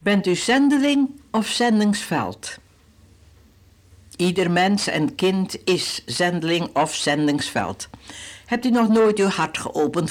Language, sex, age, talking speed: Dutch, female, 60-79, 120 wpm